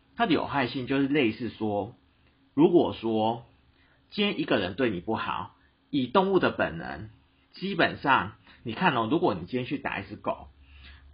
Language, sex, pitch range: Chinese, male, 100-165 Hz